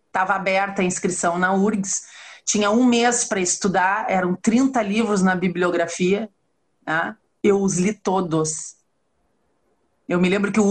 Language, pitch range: Portuguese, 195-230 Hz